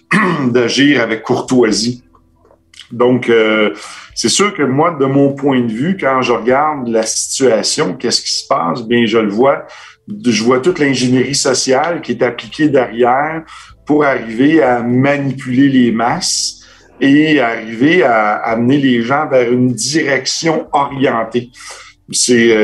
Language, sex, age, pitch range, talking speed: French, male, 50-69, 115-140 Hz, 140 wpm